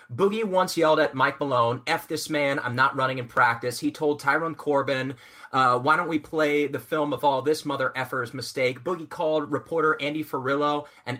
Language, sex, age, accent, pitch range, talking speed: English, male, 30-49, American, 130-175 Hz, 200 wpm